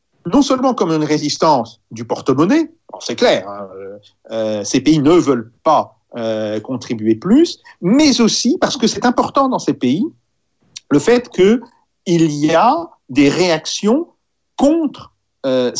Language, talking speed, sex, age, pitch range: French, 145 wpm, male, 50-69, 145-235 Hz